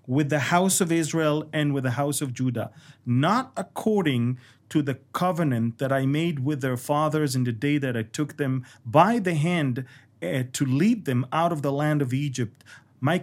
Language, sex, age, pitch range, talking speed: English, male, 40-59, 130-170 Hz, 195 wpm